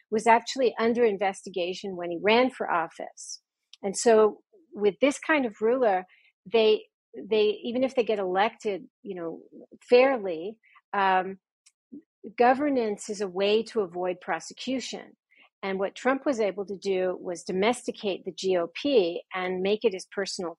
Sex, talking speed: female, 145 wpm